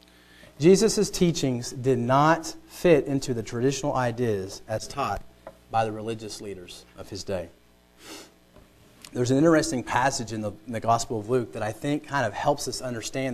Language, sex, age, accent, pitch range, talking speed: English, male, 40-59, American, 100-130 Hz, 165 wpm